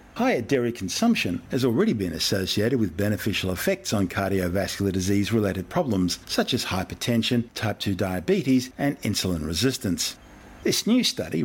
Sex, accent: male, Australian